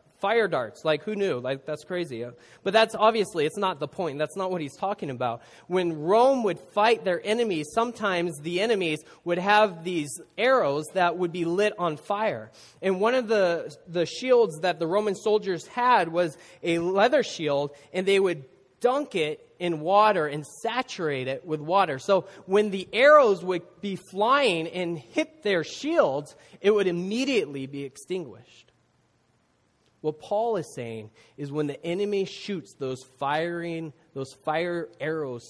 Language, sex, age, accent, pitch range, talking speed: English, male, 20-39, American, 135-195 Hz, 165 wpm